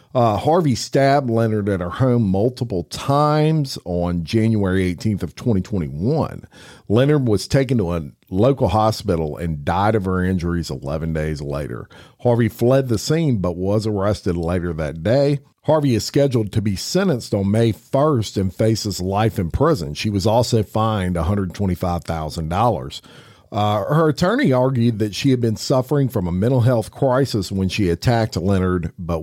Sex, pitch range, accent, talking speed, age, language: male, 90-120 Hz, American, 160 wpm, 50-69, English